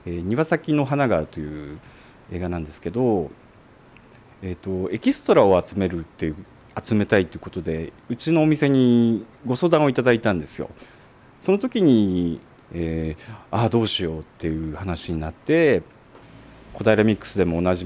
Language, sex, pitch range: Japanese, male, 90-130 Hz